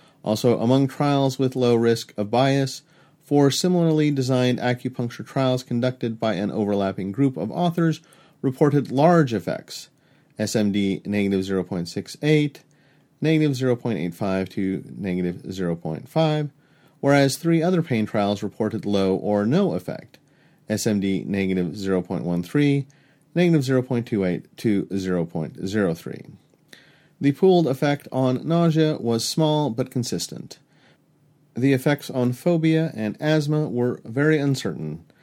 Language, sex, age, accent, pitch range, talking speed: English, male, 40-59, American, 105-150 Hz, 110 wpm